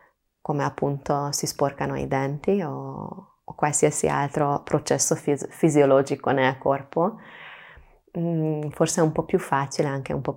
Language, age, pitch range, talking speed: Italian, 20-39, 140-175 Hz, 140 wpm